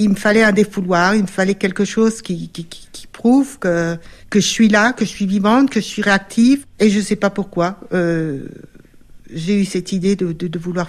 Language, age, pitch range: French, 60-79, 175-220 Hz